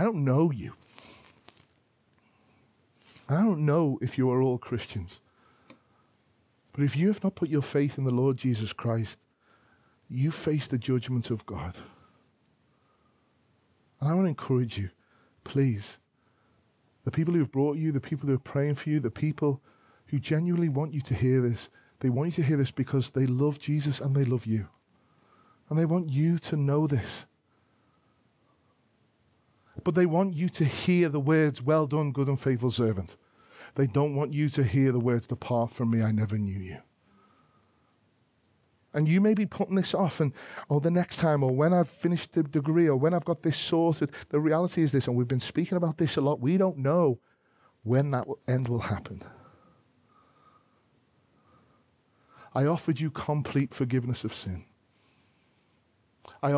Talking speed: 170 wpm